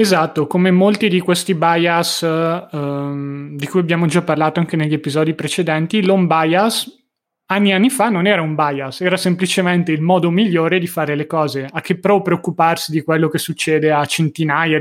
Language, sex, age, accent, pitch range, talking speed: Italian, male, 30-49, native, 150-175 Hz, 180 wpm